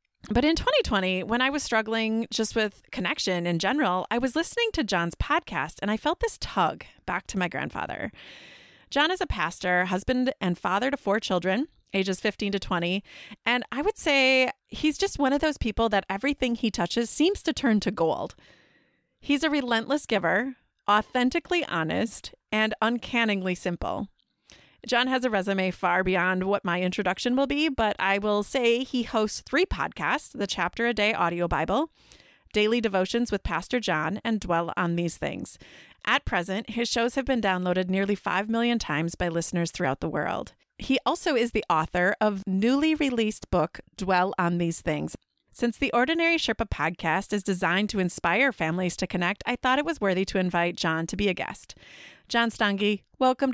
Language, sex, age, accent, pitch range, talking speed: English, female, 30-49, American, 185-255 Hz, 180 wpm